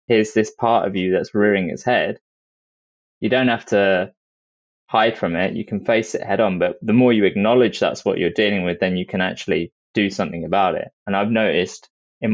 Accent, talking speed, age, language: British, 215 wpm, 20-39, English